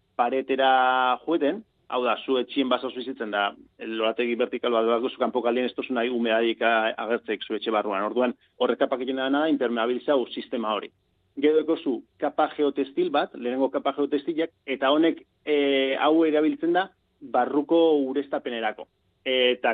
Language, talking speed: Spanish, 135 wpm